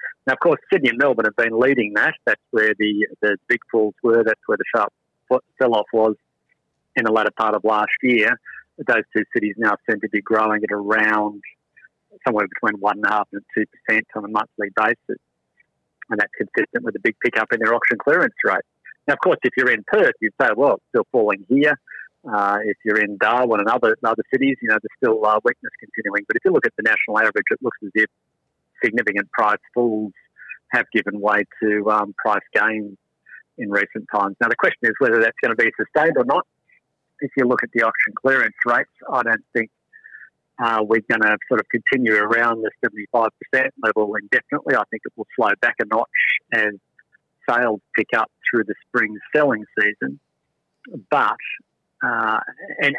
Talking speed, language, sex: 205 wpm, English, male